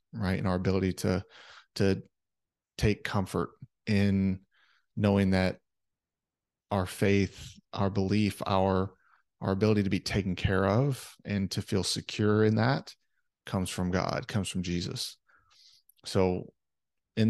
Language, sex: English, male